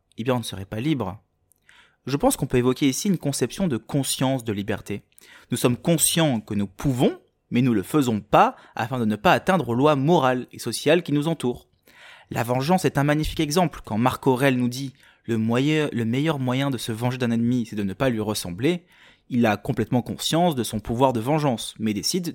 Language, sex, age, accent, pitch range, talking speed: French, male, 20-39, French, 115-160 Hz, 225 wpm